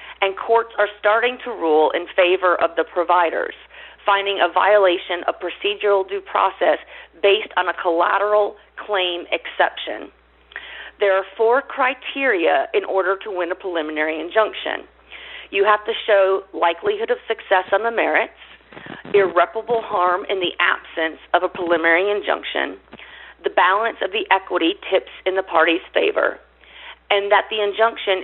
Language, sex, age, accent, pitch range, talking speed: English, female, 40-59, American, 175-225 Hz, 145 wpm